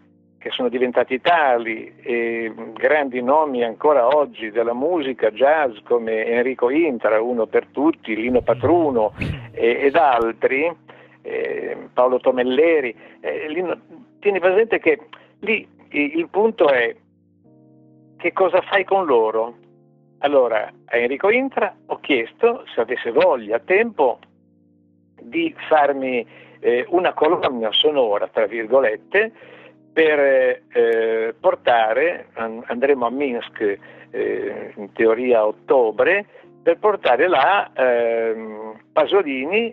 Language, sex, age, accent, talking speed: Italian, male, 50-69, native, 110 wpm